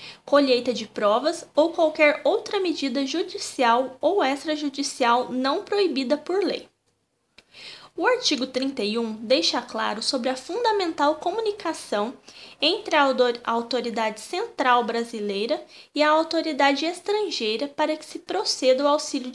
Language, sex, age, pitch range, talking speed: Portuguese, female, 20-39, 245-320 Hz, 120 wpm